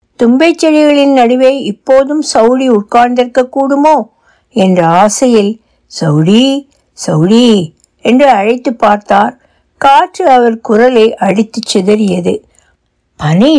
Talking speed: 90 wpm